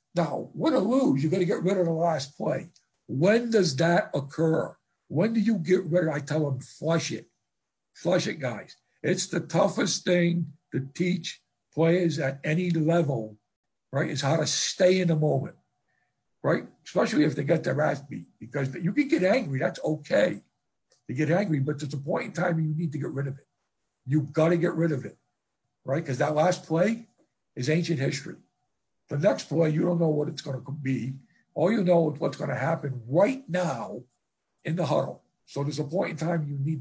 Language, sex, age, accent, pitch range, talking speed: English, male, 60-79, American, 145-180 Hz, 205 wpm